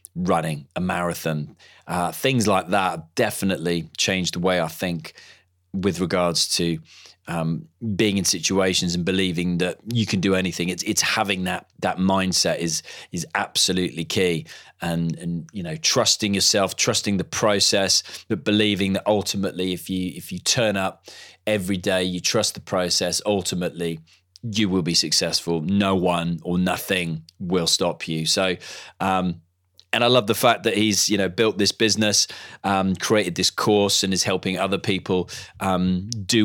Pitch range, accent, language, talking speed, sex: 90-110 Hz, British, English, 165 wpm, male